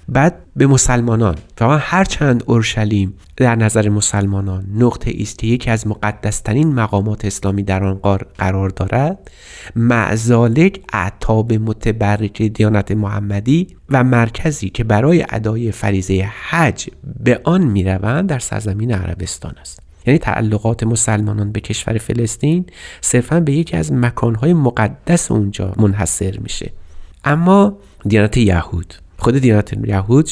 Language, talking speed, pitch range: Persian, 125 wpm, 100-130 Hz